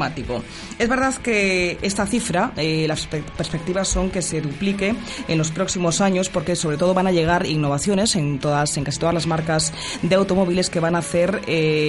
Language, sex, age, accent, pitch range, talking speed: Spanish, female, 20-39, Spanish, 160-200 Hz, 190 wpm